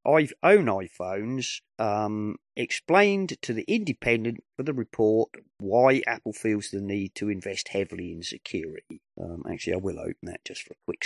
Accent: British